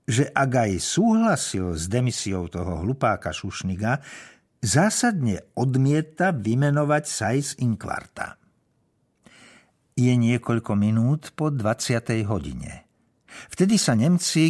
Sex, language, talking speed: male, Slovak, 95 wpm